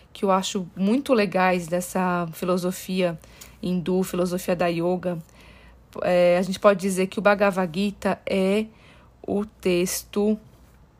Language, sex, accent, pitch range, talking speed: Portuguese, female, Brazilian, 180-210 Hz, 120 wpm